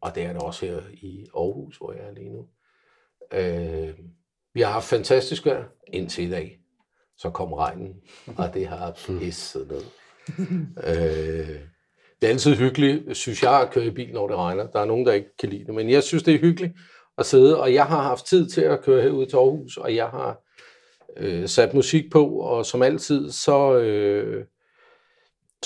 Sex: male